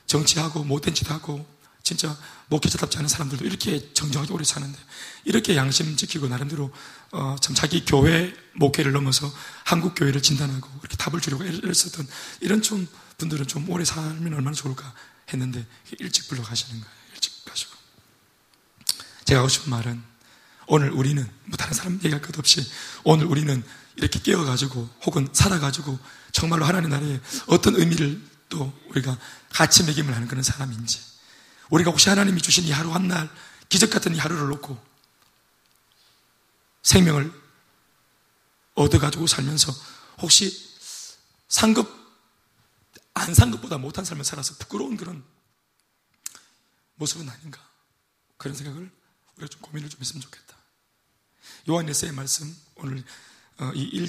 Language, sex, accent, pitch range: Korean, male, native, 135-170 Hz